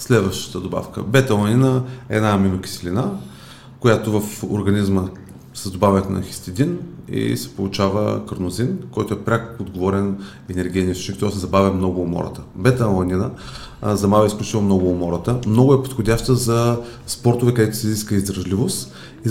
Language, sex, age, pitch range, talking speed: Bulgarian, male, 30-49, 95-115 Hz, 135 wpm